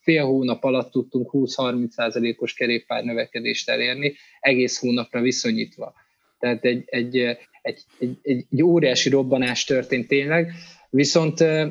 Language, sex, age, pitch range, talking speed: Hungarian, male, 20-39, 120-155 Hz, 115 wpm